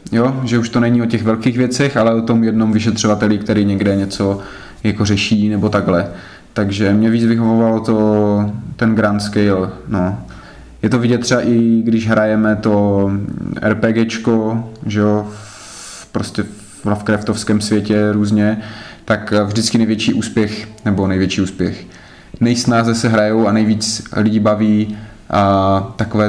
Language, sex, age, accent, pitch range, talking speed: Czech, male, 20-39, native, 105-110 Hz, 130 wpm